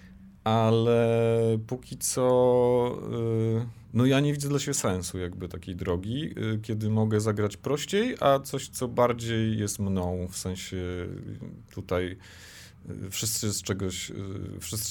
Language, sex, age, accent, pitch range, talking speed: Polish, male, 40-59, native, 95-115 Hz, 110 wpm